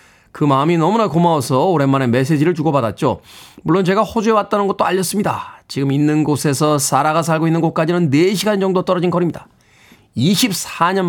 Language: Korean